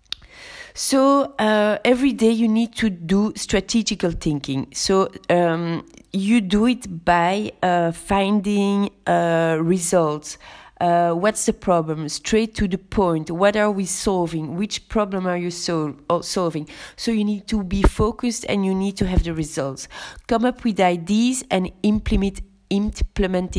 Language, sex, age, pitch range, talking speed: English, female, 30-49, 170-220 Hz, 150 wpm